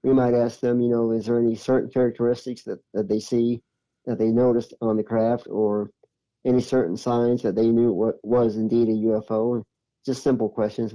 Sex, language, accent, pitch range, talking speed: male, English, American, 110-120 Hz, 195 wpm